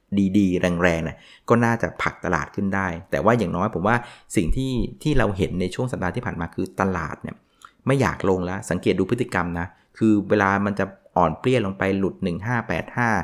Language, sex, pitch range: Thai, male, 90-110 Hz